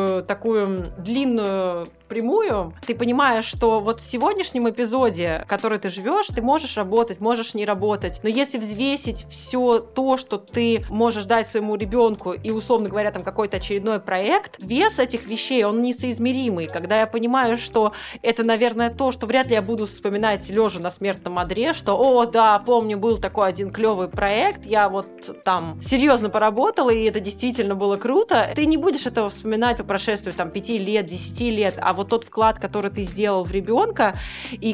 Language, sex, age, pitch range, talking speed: Russian, female, 20-39, 195-235 Hz, 175 wpm